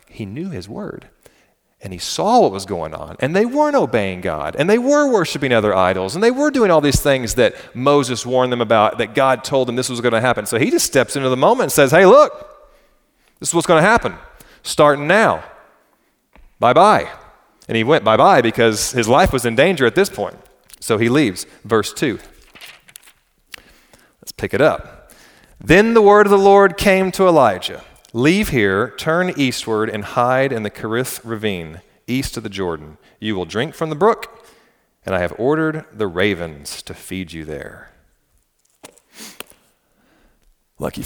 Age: 30-49